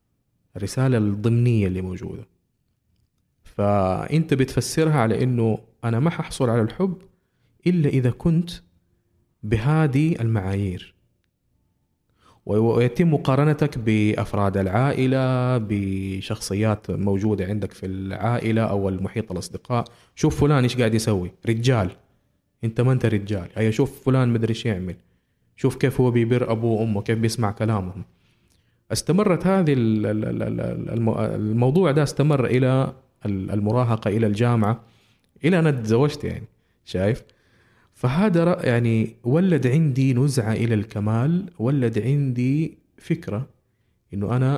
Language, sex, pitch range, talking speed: Arabic, male, 100-130 Hz, 110 wpm